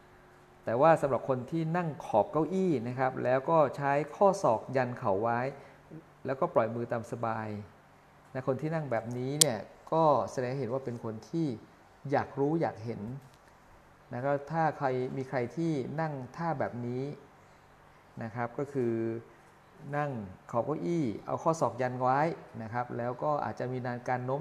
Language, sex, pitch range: Thai, male, 115-145 Hz